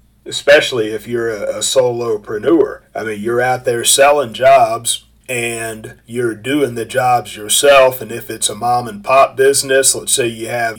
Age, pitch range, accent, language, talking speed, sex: 40-59, 115-135 Hz, American, English, 170 wpm, male